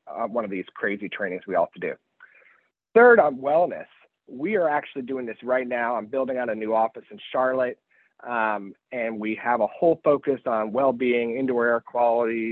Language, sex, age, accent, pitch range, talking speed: English, male, 30-49, American, 120-155 Hz, 190 wpm